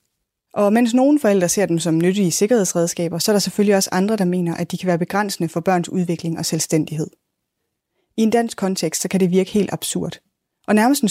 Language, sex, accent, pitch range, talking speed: Danish, female, native, 170-210 Hz, 215 wpm